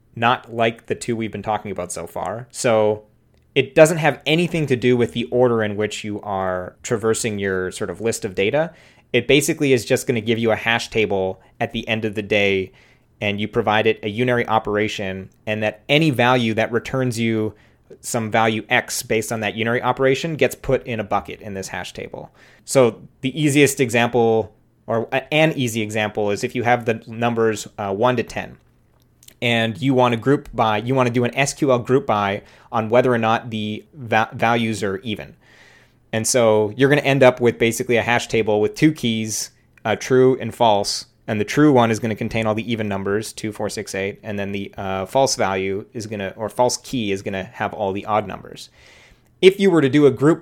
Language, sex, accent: English, male, American